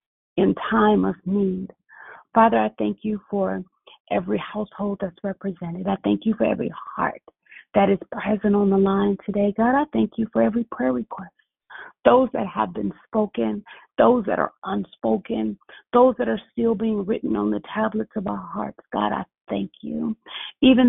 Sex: female